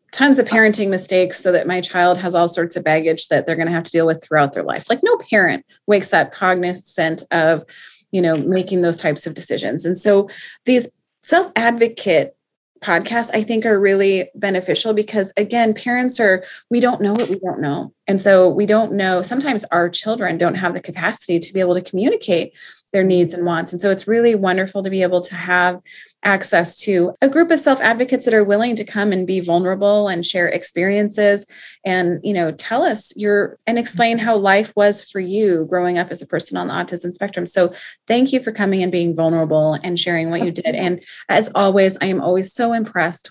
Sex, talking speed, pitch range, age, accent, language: female, 210 wpm, 175-215 Hz, 30-49, American, English